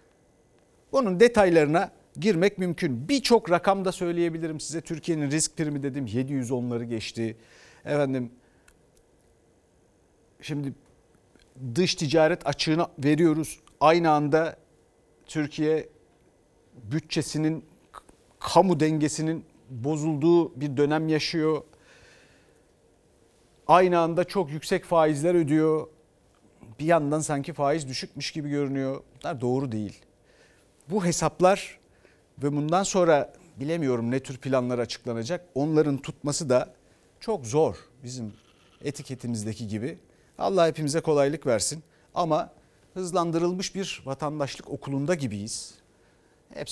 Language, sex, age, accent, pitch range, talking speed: Turkish, male, 50-69, native, 120-165 Hz, 95 wpm